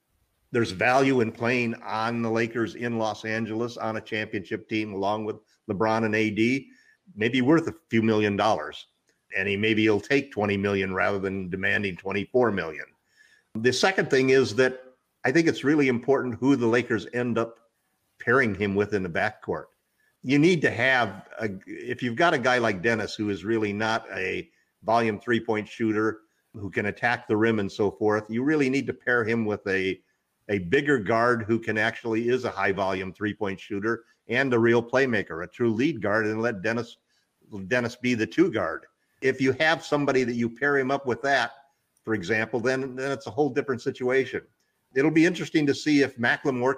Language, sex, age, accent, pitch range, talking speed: English, male, 50-69, American, 110-130 Hz, 185 wpm